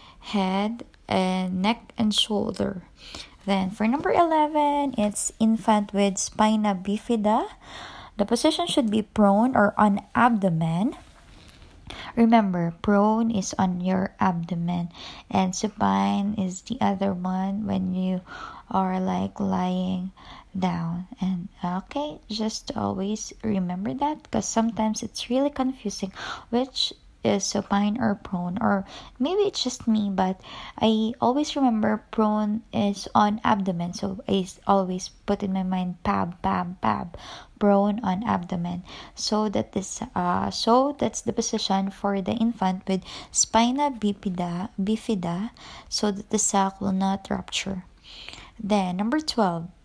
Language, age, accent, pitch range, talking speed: English, 20-39, Filipino, 190-225 Hz, 130 wpm